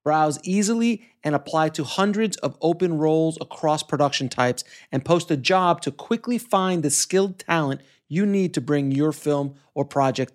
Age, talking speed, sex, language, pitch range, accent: 30-49, 175 wpm, male, English, 135-175 Hz, American